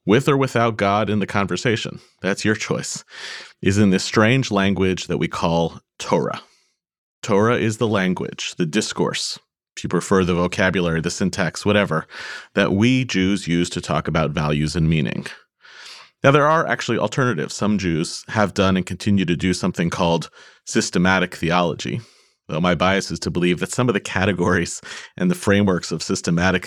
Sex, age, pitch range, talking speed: male, 30-49, 90-115 Hz, 170 wpm